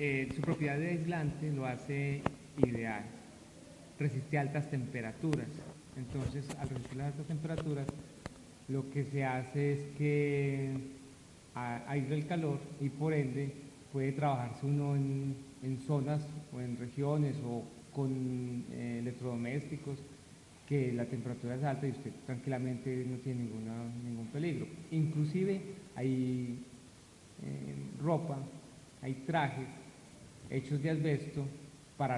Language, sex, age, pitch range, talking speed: Spanish, male, 40-59, 125-145 Hz, 125 wpm